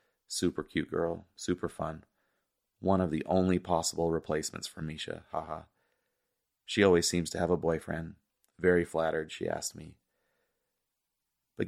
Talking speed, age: 145 wpm, 30-49